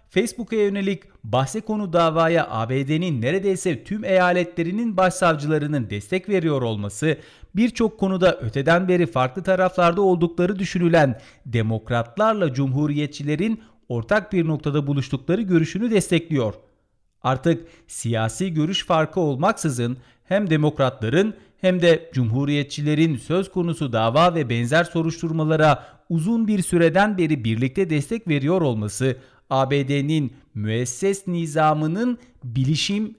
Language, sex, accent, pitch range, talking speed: Turkish, male, native, 135-185 Hz, 105 wpm